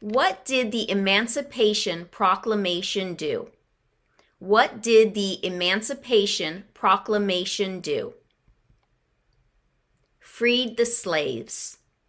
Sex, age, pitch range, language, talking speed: female, 30-49, 190-255 Hz, English, 75 wpm